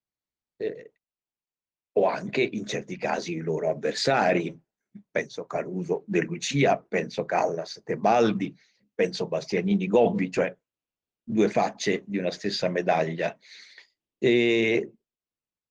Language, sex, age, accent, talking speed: Italian, male, 60-79, native, 105 wpm